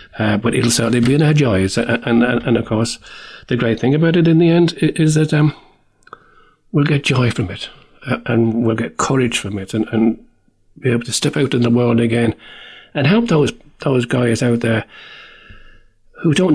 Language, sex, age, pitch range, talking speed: English, male, 40-59, 110-145 Hz, 205 wpm